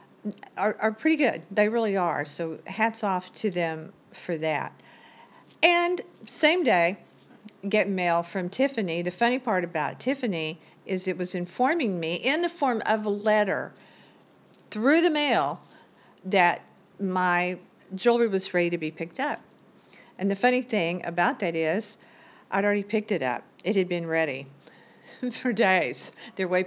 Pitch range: 170-225 Hz